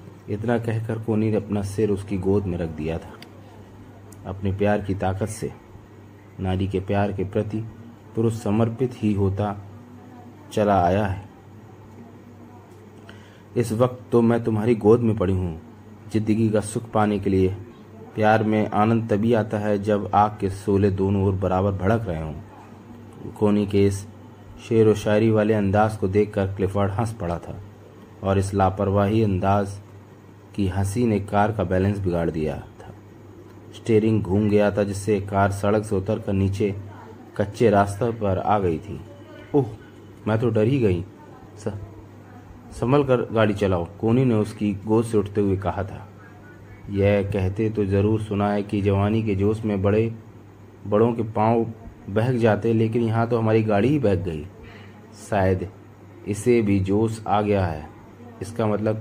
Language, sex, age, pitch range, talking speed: Hindi, male, 30-49, 100-110 Hz, 160 wpm